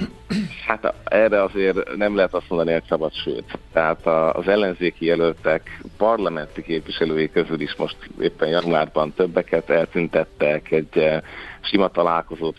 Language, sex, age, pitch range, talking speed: Hungarian, male, 50-69, 80-95 Hz, 125 wpm